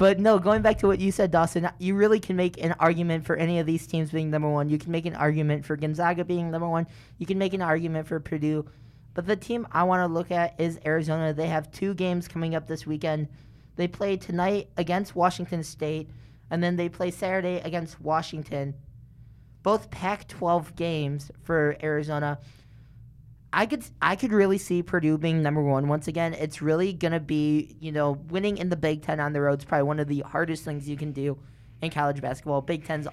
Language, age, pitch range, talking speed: English, 20-39, 150-180 Hz, 210 wpm